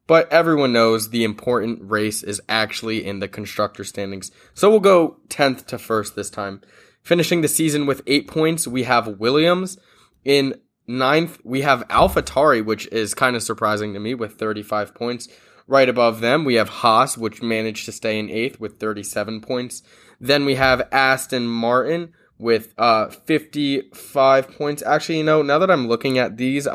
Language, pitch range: English, 105-135 Hz